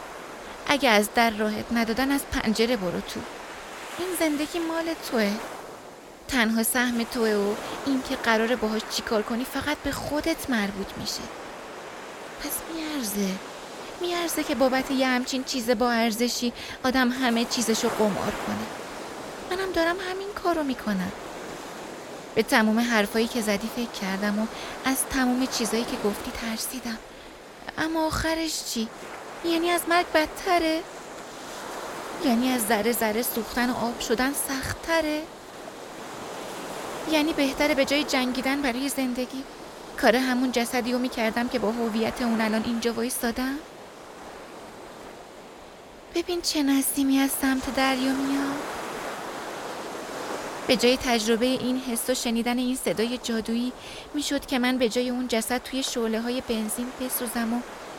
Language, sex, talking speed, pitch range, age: Persian, female, 130 wpm, 230-275 Hz, 30-49